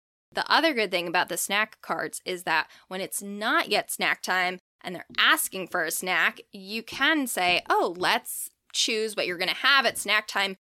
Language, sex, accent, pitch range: English, female, American, 185-240 Hz